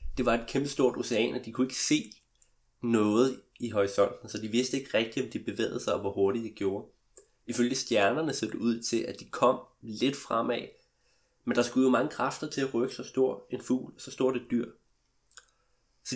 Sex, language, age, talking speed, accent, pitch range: male, Danish, 20-39, 210 wpm, native, 120-150 Hz